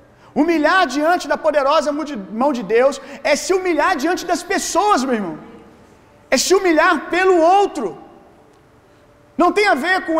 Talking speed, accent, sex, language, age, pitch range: 145 wpm, Brazilian, male, Gujarati, 40-59, 240-310 Hz